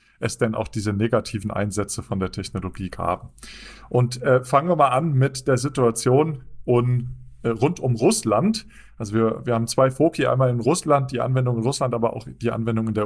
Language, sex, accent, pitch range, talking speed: German, male, German, 115-135 Hz, 200 wpm